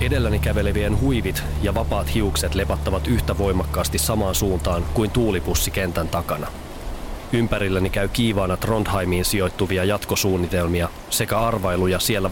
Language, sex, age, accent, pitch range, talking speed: Finnish, male, 30-49, native, 75-100 Hz, 110 wpm